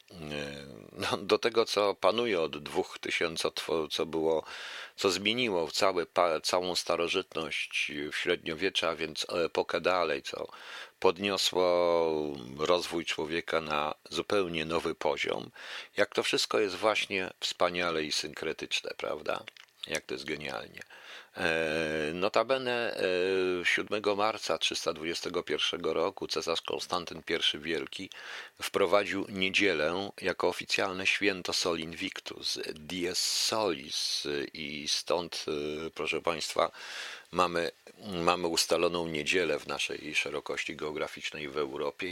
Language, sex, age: Polish, male, 50-69